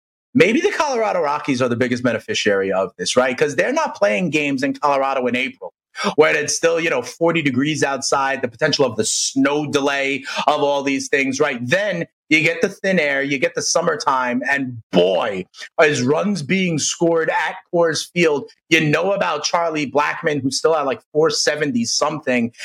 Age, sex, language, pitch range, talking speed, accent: 30-49, male, English, 150-250 Hz, 180 wpm, American